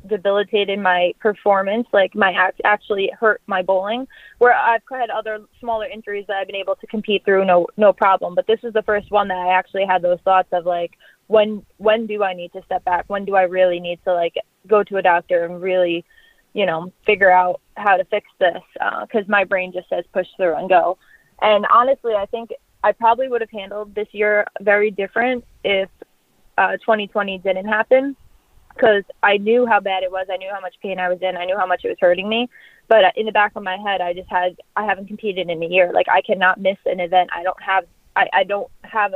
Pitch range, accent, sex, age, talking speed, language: 185-215 Hz, American, female, 20-39, 230 wpm, English